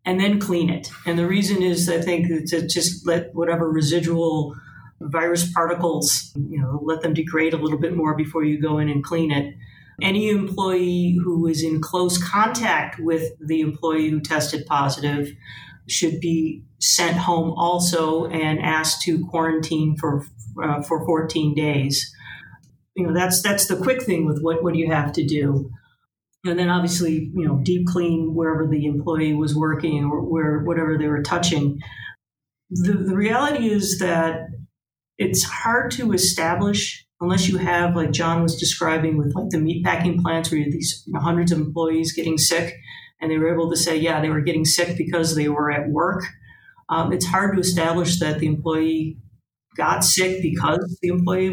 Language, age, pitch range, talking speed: English, 40-59, 155-175 Hz, 180 wpm